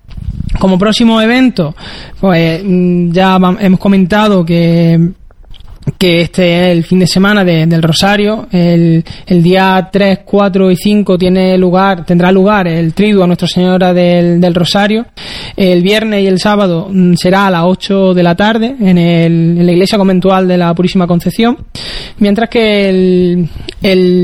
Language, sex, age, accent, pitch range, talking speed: Spanish, male, 20-39, Spanish, 170-200 Hz, 160 wpm